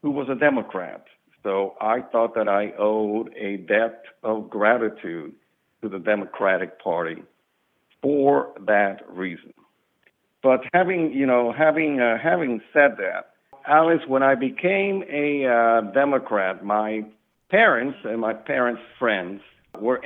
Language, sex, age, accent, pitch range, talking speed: English, male, 60-79, American, 105-130 Hz, 130 wpm